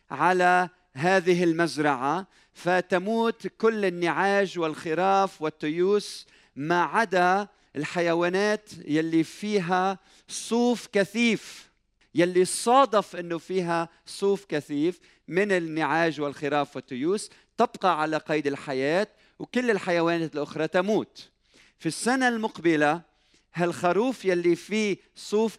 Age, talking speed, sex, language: 40-59, 95 wpm, male, Arabic